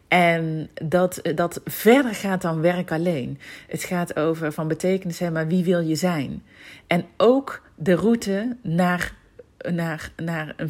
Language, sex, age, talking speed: Dutch, female, 40-59, 145 wpm